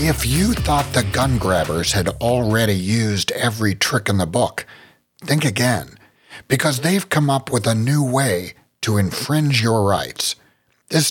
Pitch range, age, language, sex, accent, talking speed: 100-140 Hz, 60-79, English, male, American, 155 wpm